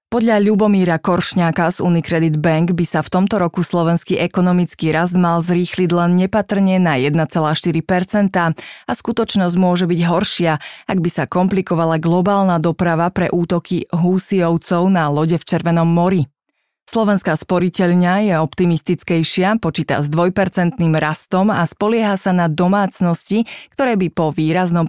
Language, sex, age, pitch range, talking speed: Slovak, female, 20-39, 165-195 Hz, 135 wpm